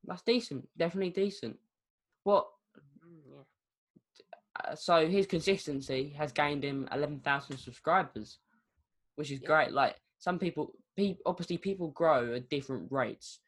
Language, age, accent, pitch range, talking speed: English, 10-29, British, 130-160 Hz, 120 wpm